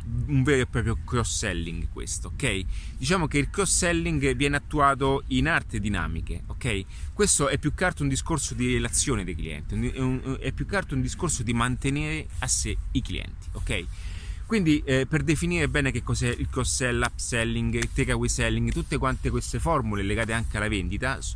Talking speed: 185 wpm